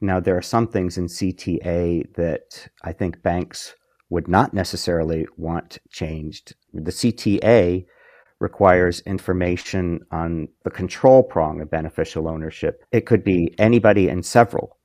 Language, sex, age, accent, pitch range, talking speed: English, male, 50-69, American, 85-100 Hz, 135 wpm